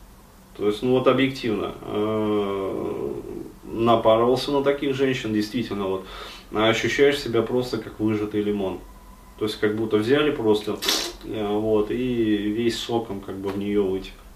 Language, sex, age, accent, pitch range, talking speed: Russian, male, 20-39, native, 105-120 Hz, 135 wpm